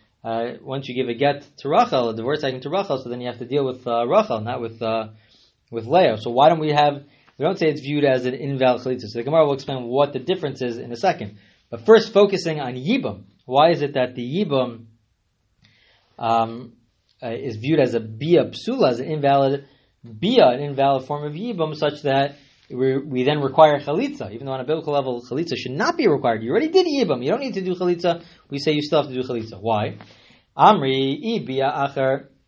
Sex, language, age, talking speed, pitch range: male, English, 20-39, 220 wpm, 125-150 Hz